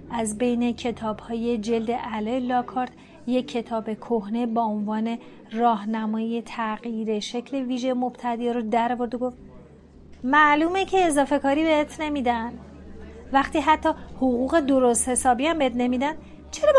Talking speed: 125 wpm